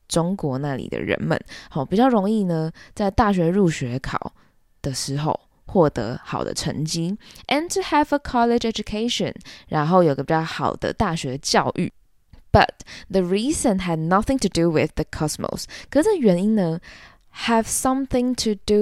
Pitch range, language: 170-245 Hz, Chinese